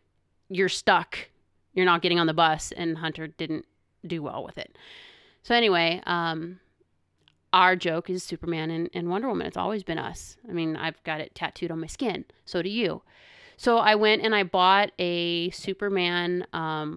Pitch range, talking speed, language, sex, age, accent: 170-205 Hz, 180 wpm, English, female, 30-49, American